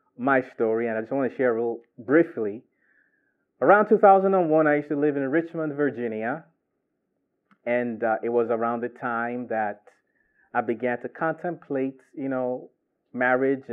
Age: 30-49